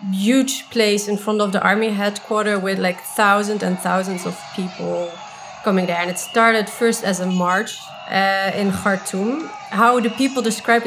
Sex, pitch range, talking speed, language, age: female, 195-230 Hz, 170 wpm, English, 30-49